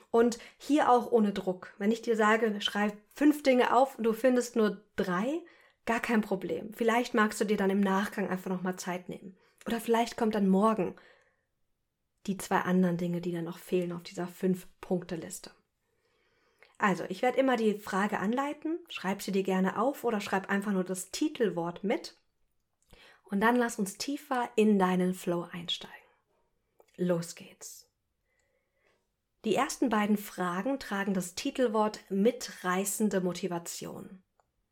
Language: German